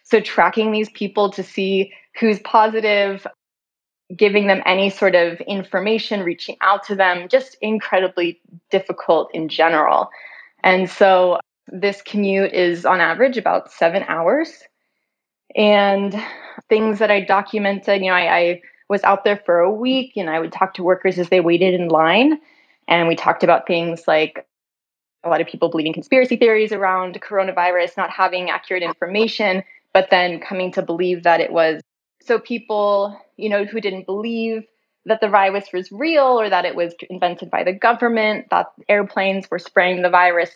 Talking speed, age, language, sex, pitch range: 165 wpm, 20-39, English, female, 180-210 Hz